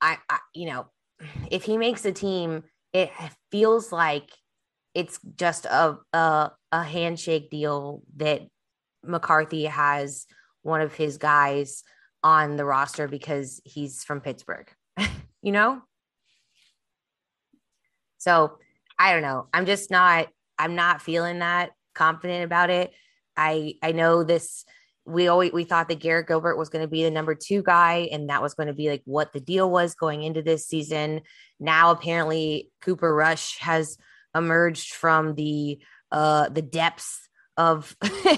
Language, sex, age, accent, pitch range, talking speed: English, female, 20-39, American, 155-180 Hz, 150 wpm